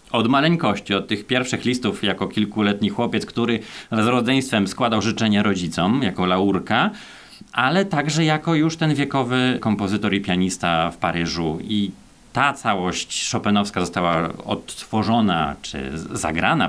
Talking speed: 130 wpm